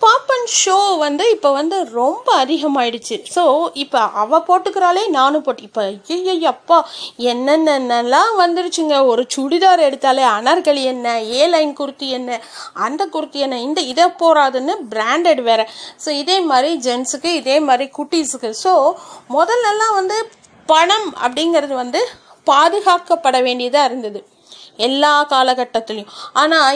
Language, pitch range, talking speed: Tamil, 260-345 Hz, 120 wpm